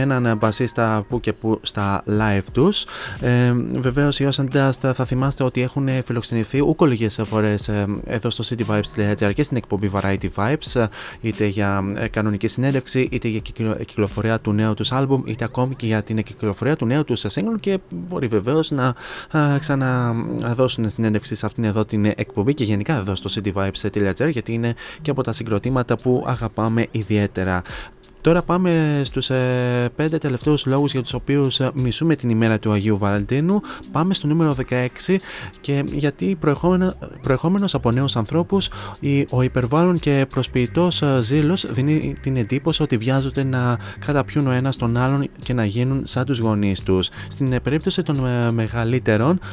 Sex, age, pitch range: male, 20-39, 110-145 Hz